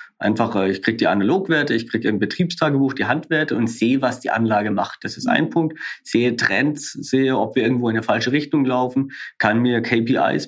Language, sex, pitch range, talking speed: German, male, 115-135 Hz, 200 wpm